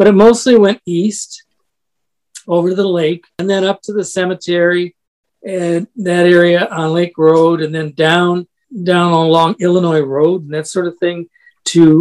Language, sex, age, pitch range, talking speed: English, male, 50-69, 165-210 Hz, 170 wpm